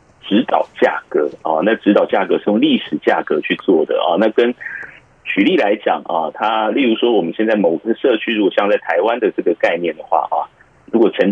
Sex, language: male, Chinese